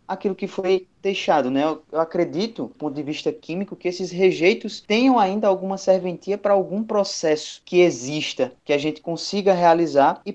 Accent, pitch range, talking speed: Brazilian, 150-190 Hz, 175 wpm